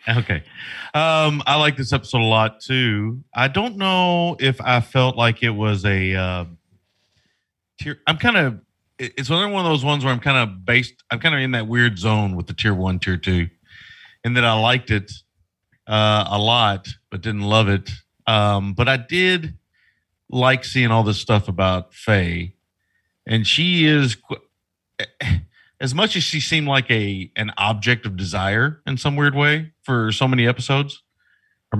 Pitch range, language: 100-130 Hz, English